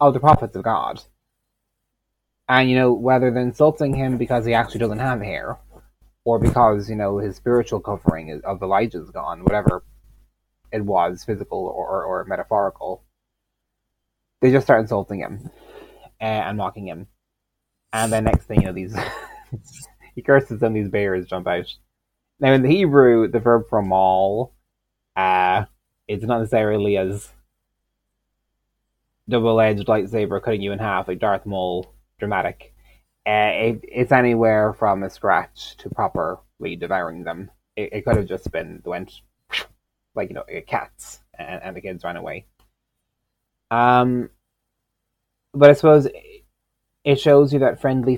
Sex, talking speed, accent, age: male, 150 wpm, American, 20-39